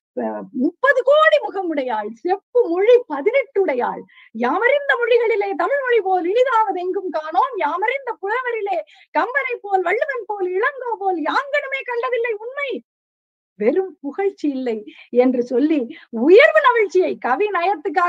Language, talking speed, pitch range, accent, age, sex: Tamil, 105 wpm, 305-425 Hz, native, 20-39, female